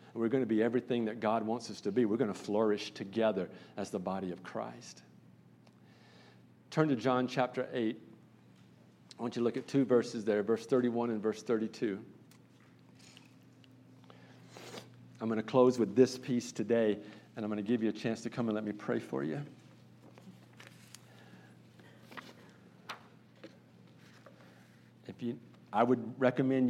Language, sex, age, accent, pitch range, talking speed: English, male, 50-69, American, 105-125 Hz, 155 wpm